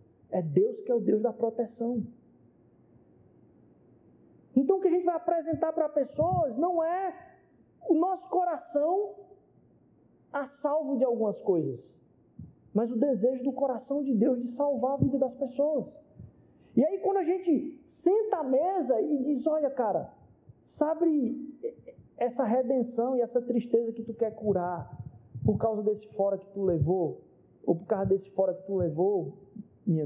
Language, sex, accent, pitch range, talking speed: Portuguese, male, Brazilian, 220-295 Hz, 160 wpm